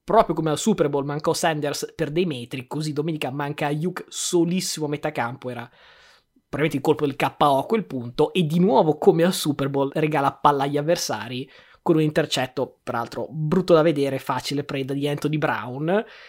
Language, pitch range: Italian, 145-180 Hz